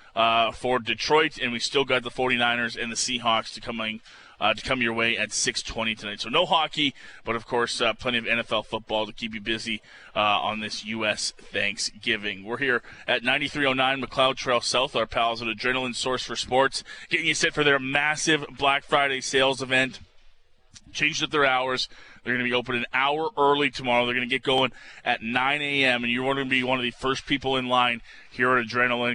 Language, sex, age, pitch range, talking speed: English, male, 20-39, 115-135 Hz, 210 wpm